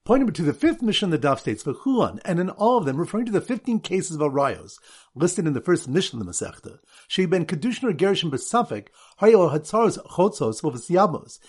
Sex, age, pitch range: male, 50-69, 140-200 Hz